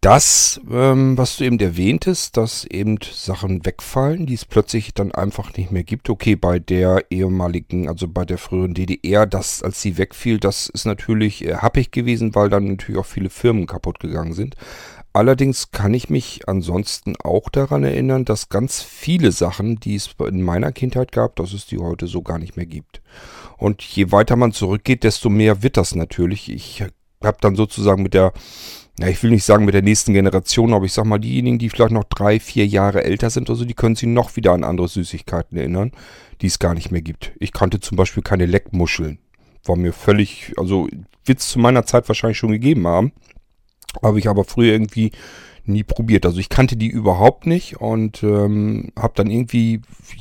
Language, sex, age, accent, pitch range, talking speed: German, male, 40-59, German, 95-115 Hz, 200 wpm